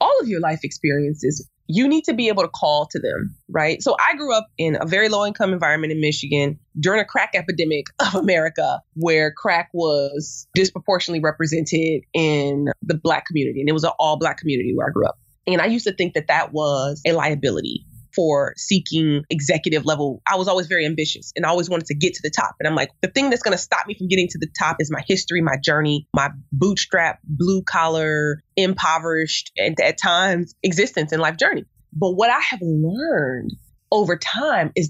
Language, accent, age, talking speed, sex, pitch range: English, American, 20-39, 210 wpm, female, 155-215 Hz